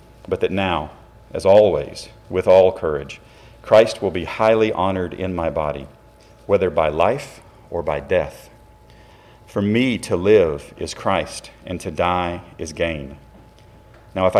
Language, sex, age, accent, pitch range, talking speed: English, male, 40-59, American, 90-110 Hz, 145 wpm